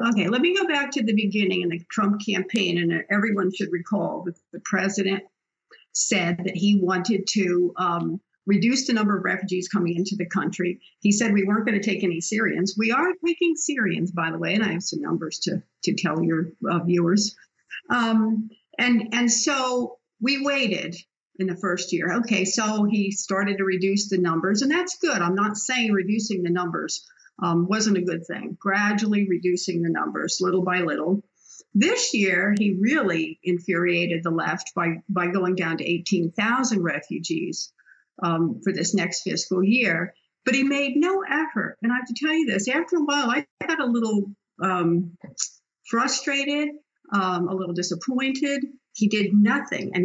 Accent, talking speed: American, 180 wpm